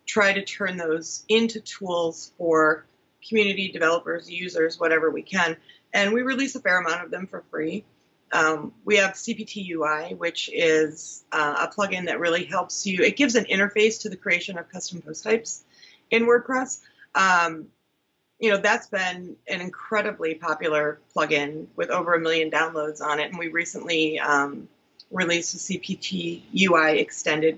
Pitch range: 165-200 Hz